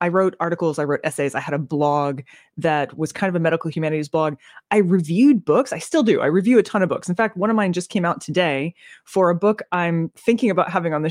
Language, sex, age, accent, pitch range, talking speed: English, female, 20-39, American, 145-190 Hz, 260 wpm